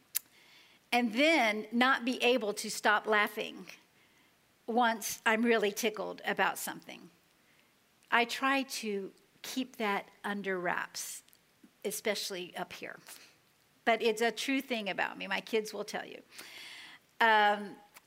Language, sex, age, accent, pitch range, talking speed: English, female, 50-69, American, 220-285 Hz, 125 wpm